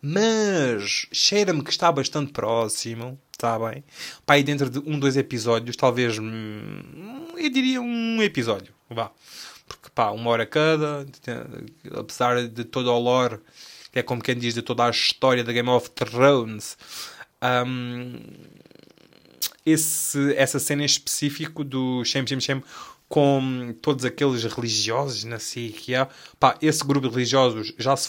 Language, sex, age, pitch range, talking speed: Portuguese, male, 20-39, 120-150 Hz, 140 wpm